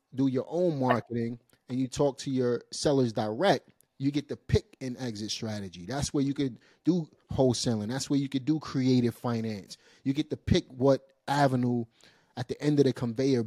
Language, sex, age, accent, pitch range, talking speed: English, male, 30-49, American, 115-140 Hz, 190 wpm